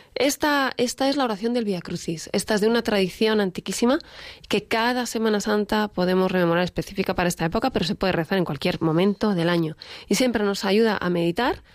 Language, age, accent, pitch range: Spanish, 20-39, Spanish, 180-235 Hz